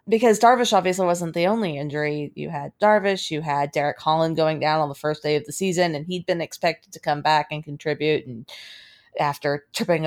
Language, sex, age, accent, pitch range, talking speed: English, female, 30-49, American, 155-215 Hz, 210 wpm